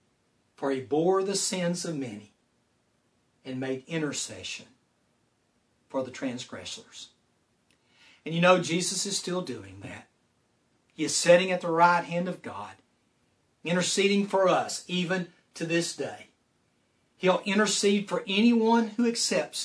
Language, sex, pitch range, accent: English, male, 150-200 Hz, American